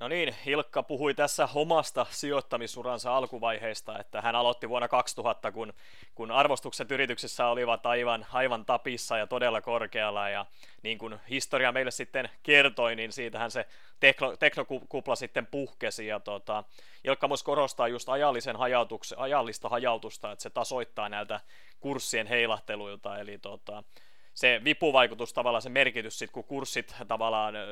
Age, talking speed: 30-49, 140 wpm